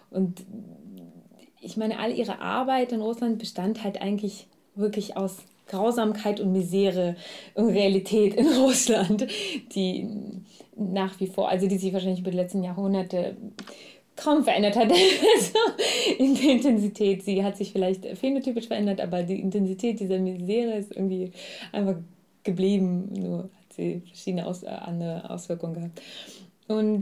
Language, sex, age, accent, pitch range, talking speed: German, female, 20-39, German, 190-215 Hz, 135 wpm